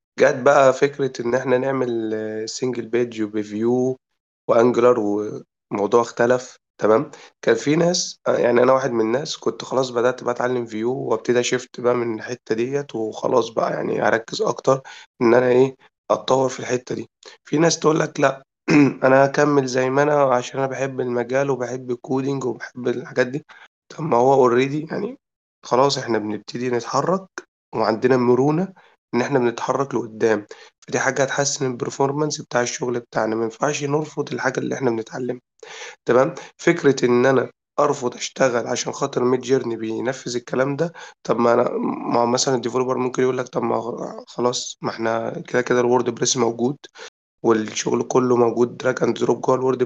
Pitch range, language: 120-140 Hz, Arabic